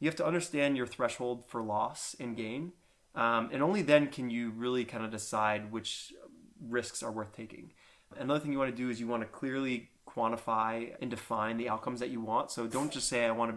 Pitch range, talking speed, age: 115-125 Hz, 225 wpm, 20-39